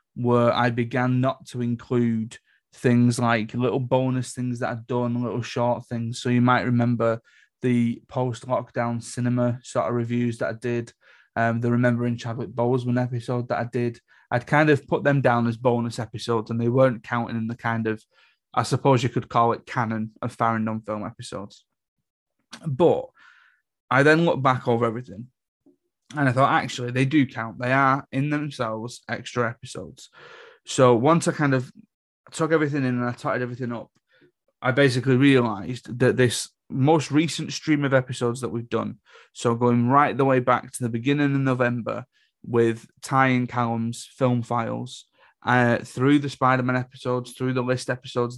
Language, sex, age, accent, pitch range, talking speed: English, male, 20-39, British, 120-130 Hz, 170 wpm